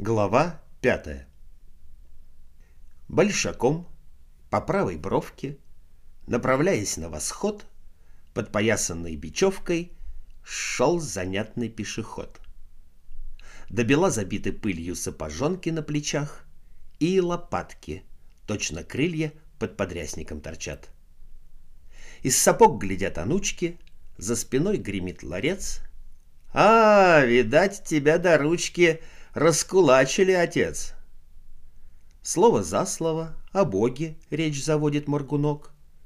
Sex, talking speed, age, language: male, 85 wpm, 50-69, Russian